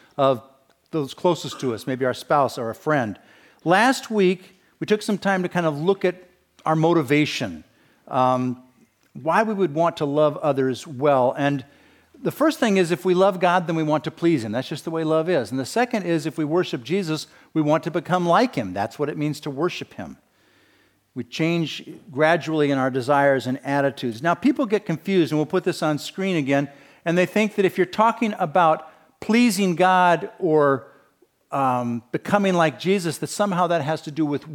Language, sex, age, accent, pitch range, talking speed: English, male, 50-69, American, 135-180 Hz, 200 wpm